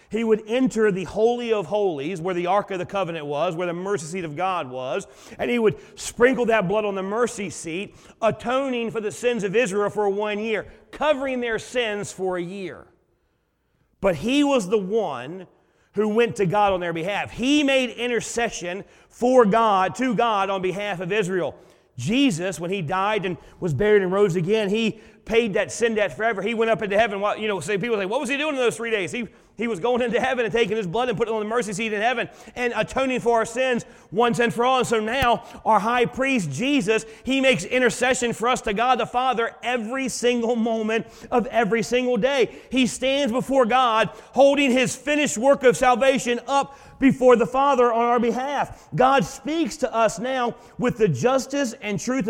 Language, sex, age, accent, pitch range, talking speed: English, male, 40-59, American, 205-250 Hz, 210 wpm